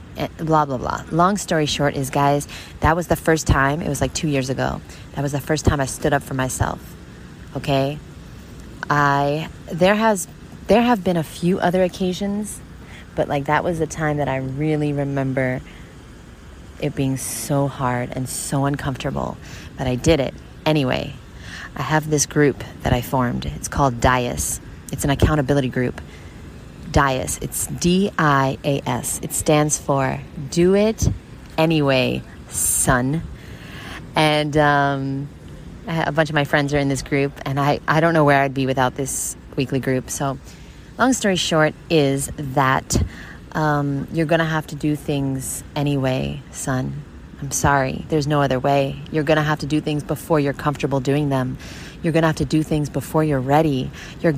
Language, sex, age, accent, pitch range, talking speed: English, female, 20-39, American, 130-155 Hz, 175 wpm